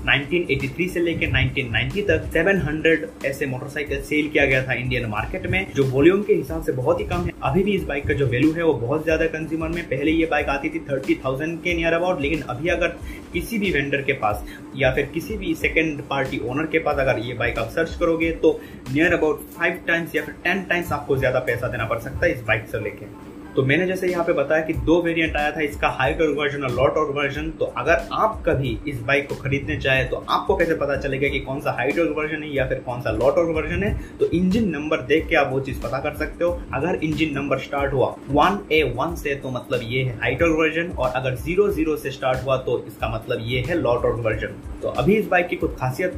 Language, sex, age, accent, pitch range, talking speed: Hindi, male, 30-49, native, 135-165 Hz, 200 wpm